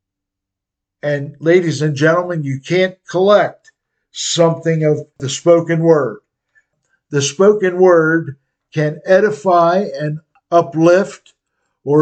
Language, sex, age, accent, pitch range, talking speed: English, male, 50-69, American, 135-170 Hz, 100 wpm